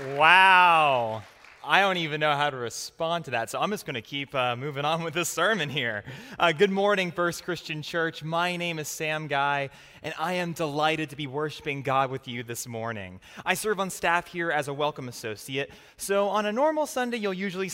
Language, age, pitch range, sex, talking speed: English, 20-39, 140-180 Hz, male, 205 wpm